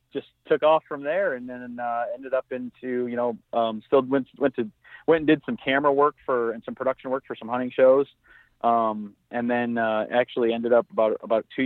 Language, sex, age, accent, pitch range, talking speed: English, male, 30-49, American, 115-130 Hz, 220 wpm